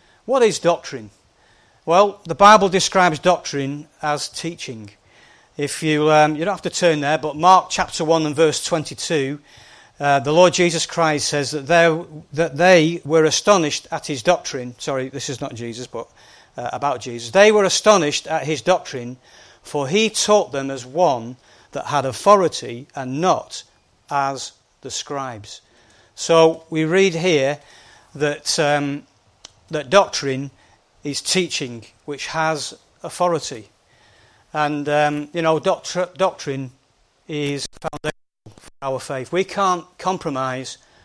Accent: British